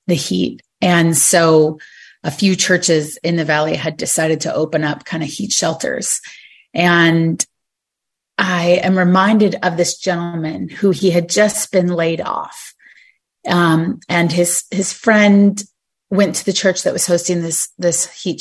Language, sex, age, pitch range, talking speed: English, female, 30-49, 165-190 Hz, 155 wpm